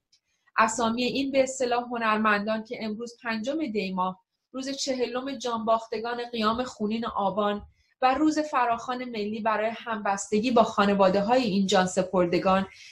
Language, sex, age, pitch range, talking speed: Persian, female, 30-49, 200-240 Hz, 120 wpm